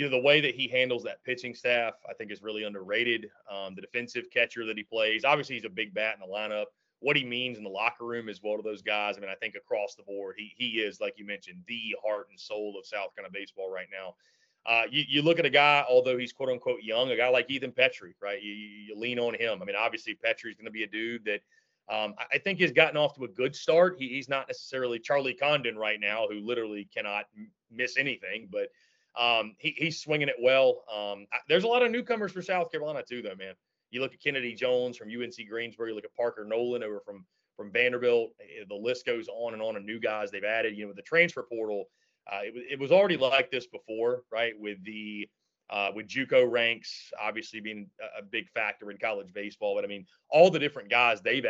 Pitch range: 110-155 Hz